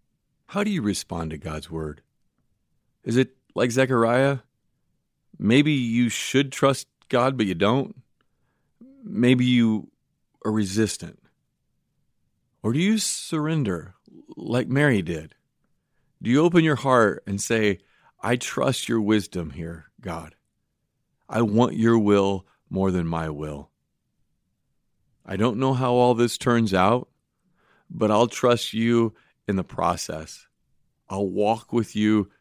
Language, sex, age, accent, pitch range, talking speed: English, male, 40-59, American, 95-125 Hz, 130 wpm